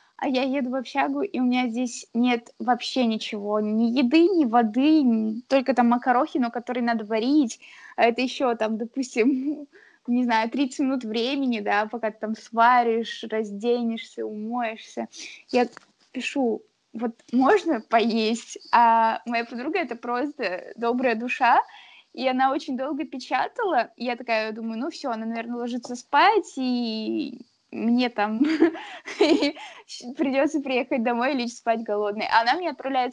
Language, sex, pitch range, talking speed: Russian, female, 235-285 Hz, 145 wpm